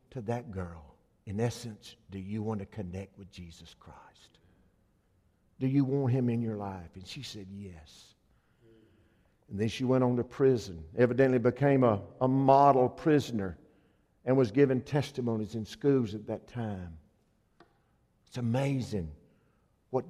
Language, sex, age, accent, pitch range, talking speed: English, male, 50-69, American, 110-145 Hz, 145 wpm